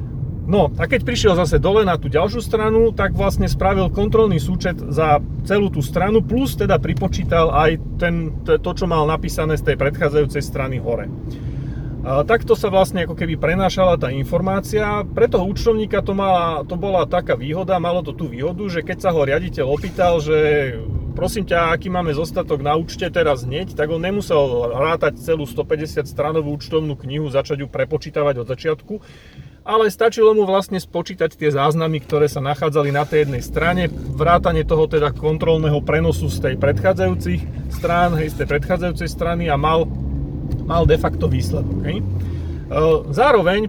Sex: male